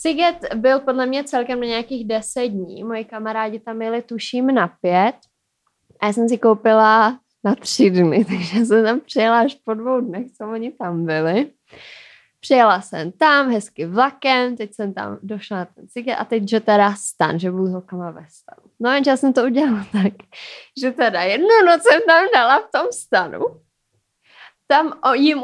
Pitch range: 205-285 Hz